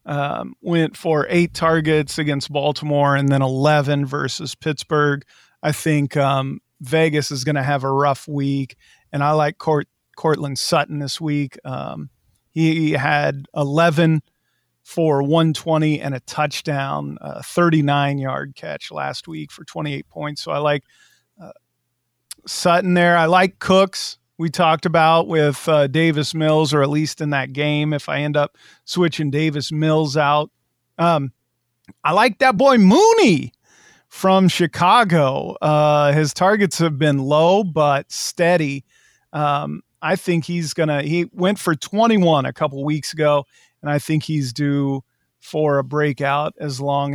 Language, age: English, 40-59